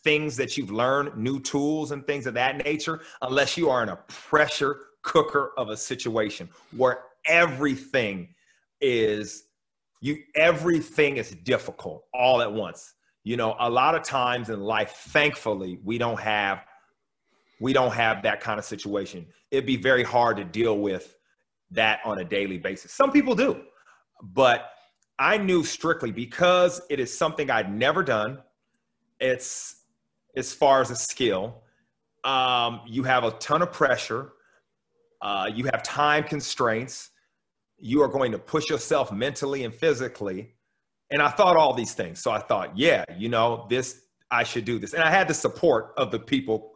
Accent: American